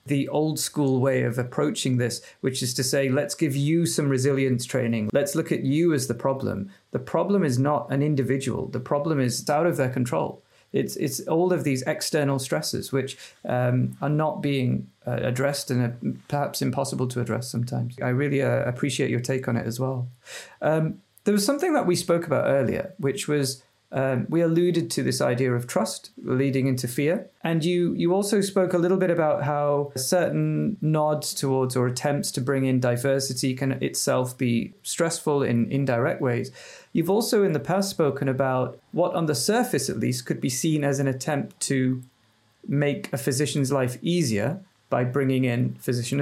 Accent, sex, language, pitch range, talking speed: British, male, English, 125-160 Hz, 190 wpm